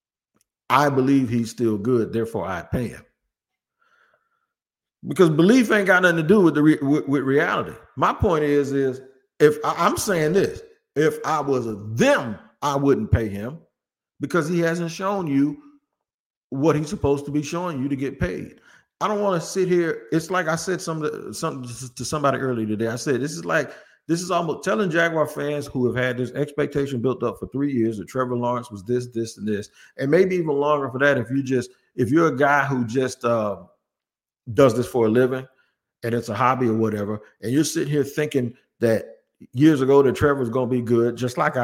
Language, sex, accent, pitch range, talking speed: English, male, American, 125-165 Hz, 205 wpm